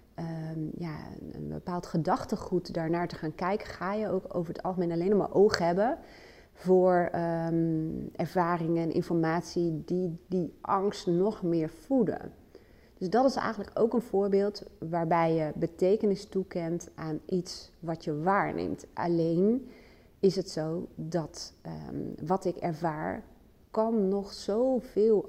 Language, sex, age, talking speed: Dutch, female, 30-49, 130 wpm